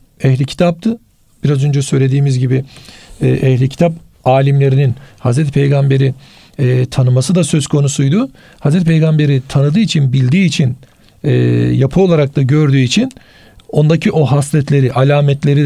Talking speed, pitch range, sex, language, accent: 125 wpm, 135-165 Hz, male, Turkish, native